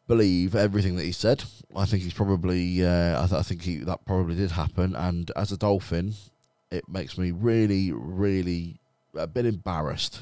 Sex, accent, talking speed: male, British, 180 wpm